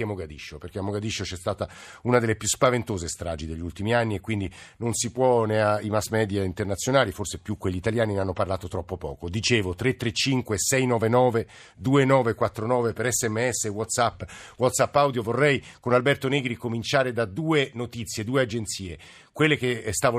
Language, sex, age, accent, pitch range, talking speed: Italian, male, 50-69, native, 105-130 Hz, 160 wpm